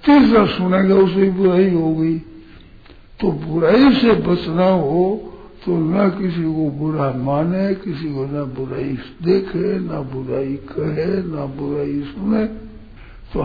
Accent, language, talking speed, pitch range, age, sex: native, Hindi, 120 wpm, 140-185 Hz, 60-79, male